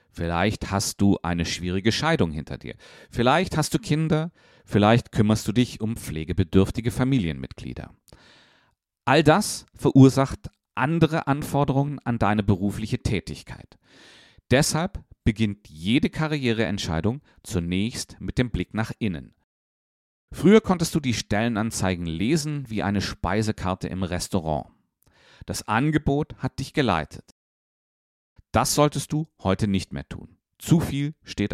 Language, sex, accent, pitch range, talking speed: German, male, German, 90-135 Hz, 120 wpm